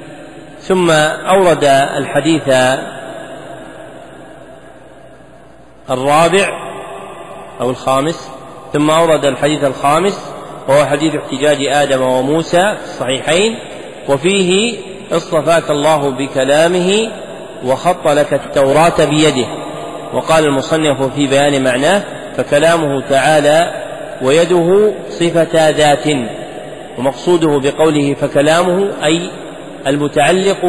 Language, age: Arabic, 40-59